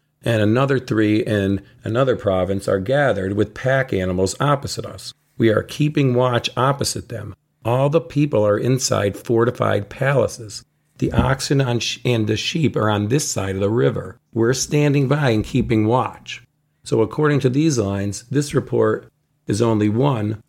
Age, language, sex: 50-69, English, male